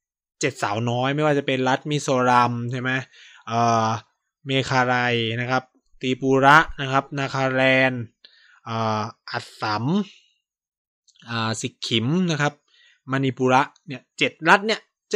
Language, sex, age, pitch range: Thai, male, 20-39, 125-165 Hz